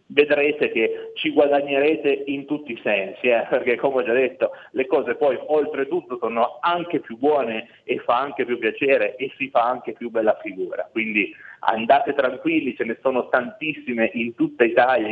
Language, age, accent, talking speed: Italian, 30-49, native, 175 wpm